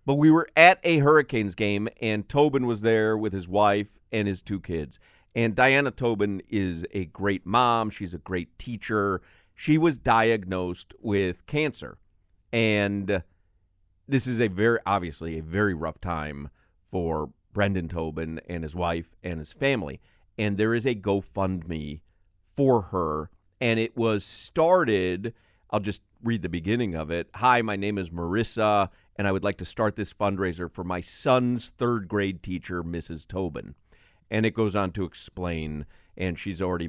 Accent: American